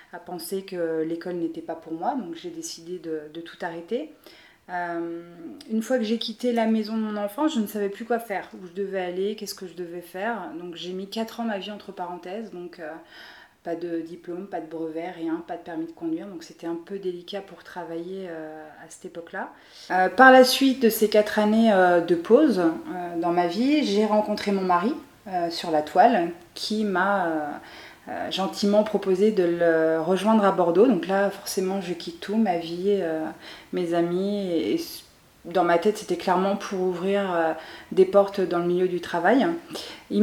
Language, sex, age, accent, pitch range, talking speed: French, female, 30-49, French, 175-215 Hz, 205 wpm